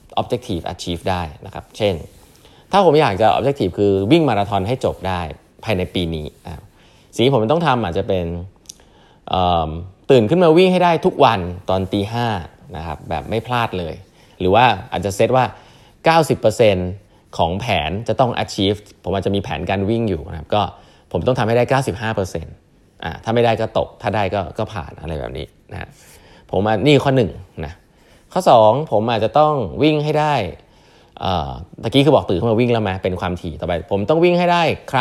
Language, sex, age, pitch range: Thai, male, 20-39, 90-130 Hz